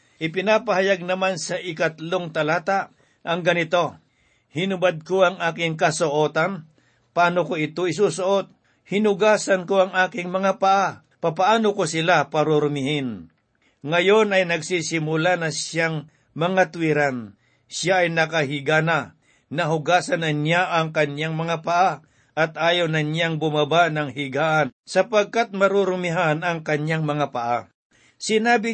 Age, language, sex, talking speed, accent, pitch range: 60-79, Filipino, male, 120 wpm, native, 150-185 Hz